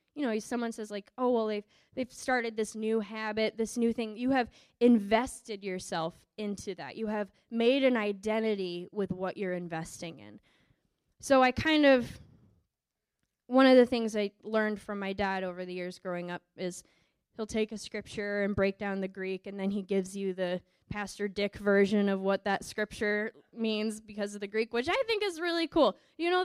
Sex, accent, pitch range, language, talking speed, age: female, American, 200-245 Hz, English, 195 wpm, 10-29